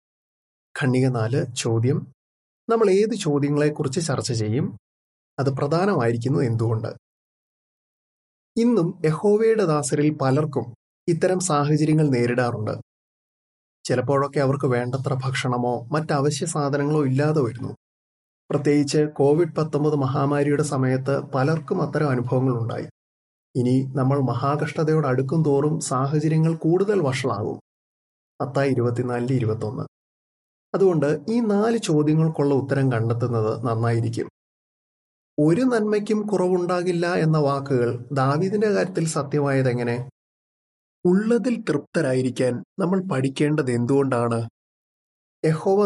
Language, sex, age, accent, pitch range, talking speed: Malayalam, male, 30-49, native, 125-160 Hz, 85 wpm